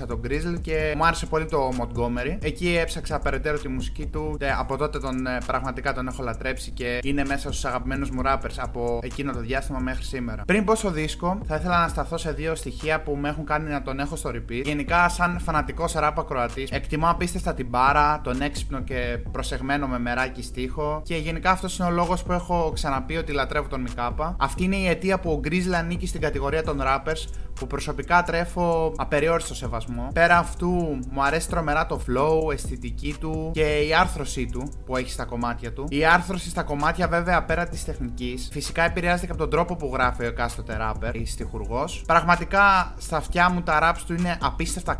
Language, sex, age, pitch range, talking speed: Greek, male, 20-39, 130-170 Hz, 200 wpm